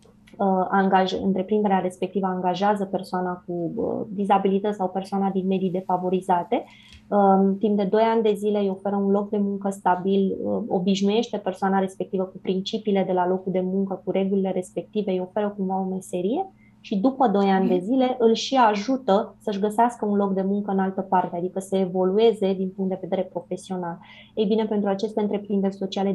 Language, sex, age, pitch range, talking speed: Romanian, female, 20-39, 185-205 Hz, 170 wpm